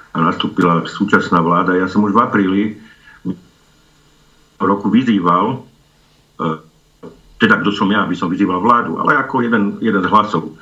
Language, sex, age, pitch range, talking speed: Slovak, male, 50-69, 85-100 Hz, 140 wpm